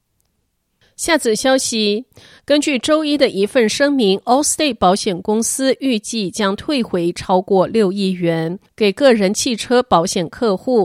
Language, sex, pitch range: Chinese, female, 190-250 Hz